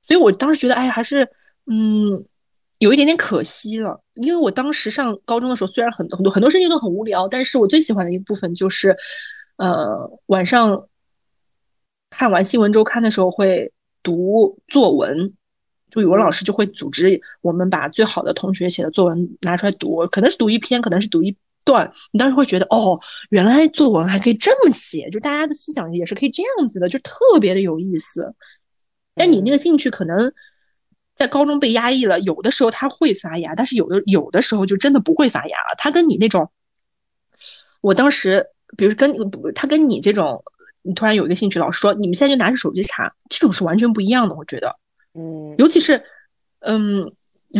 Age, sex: 20-39, female